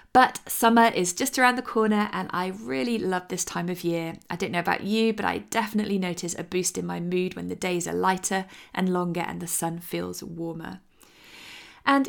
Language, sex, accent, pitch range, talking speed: English, female, British, 180-225 Hz, 210 wpm